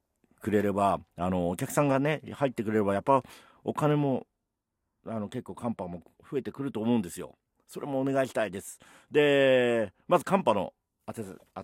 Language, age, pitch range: Japanese, 50-69, 100-135 Hz